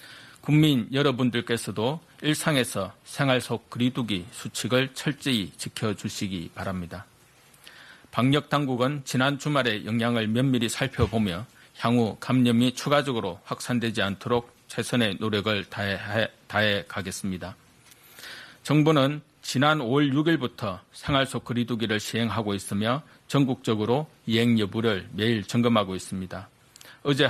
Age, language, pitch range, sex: 40-59, Korean, 105-130 Hz, male